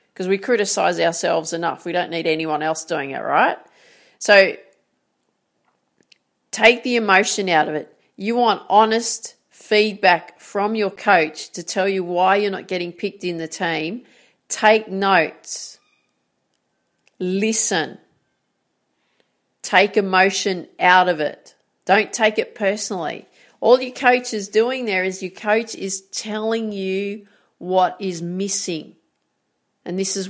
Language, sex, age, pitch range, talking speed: English, female, 40-59, 175-215 Hz, 135 wpm